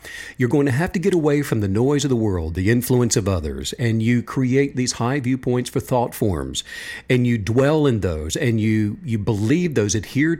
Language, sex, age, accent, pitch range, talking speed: English, male, 50-69, American, 110-145 Hz, 215 wpm